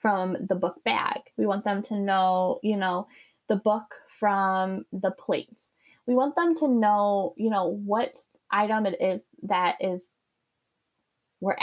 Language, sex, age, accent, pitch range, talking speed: English, female, 10-29, American, 195-260 Hz, 155 wpm